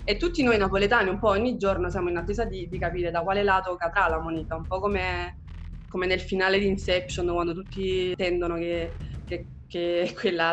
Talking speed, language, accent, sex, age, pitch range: 200 wpm, Italian, native, female, 20-39, 175-210 Hz